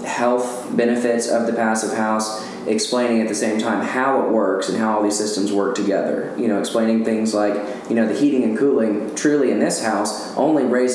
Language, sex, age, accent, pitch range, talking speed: English, male, 20-39, American, 105-120 Hz, 210 wpm